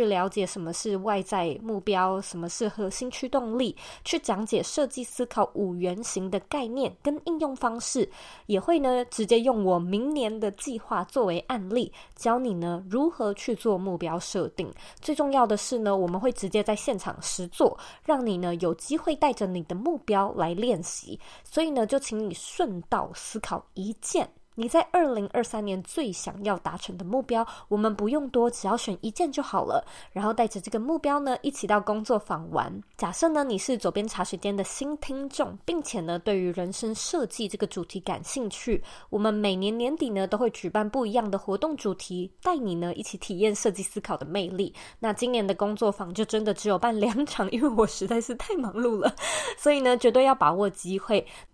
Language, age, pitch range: Chinese, 20-39, 195-255 Hz